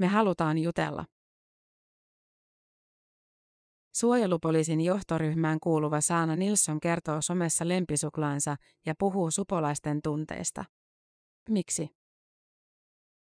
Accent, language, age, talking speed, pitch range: native, Finnish, 30-49, 70 wpm, 155-195 Hz